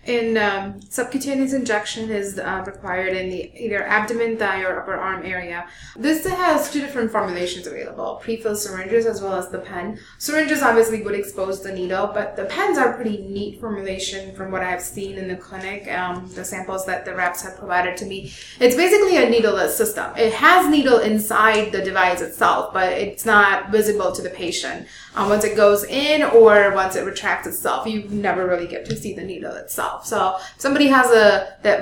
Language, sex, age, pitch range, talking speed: English, female, 20-39, 185-225 Hz, 200 wpm